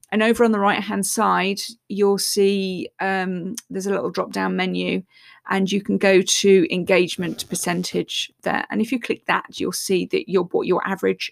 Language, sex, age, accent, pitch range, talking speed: English, female, 30-49, British, 195-250 Hz, 185 wpm